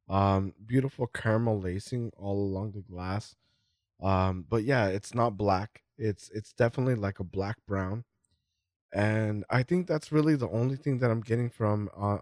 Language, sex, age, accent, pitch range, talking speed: English, male, 20-39, American, 100-120 Hz, 165 wpm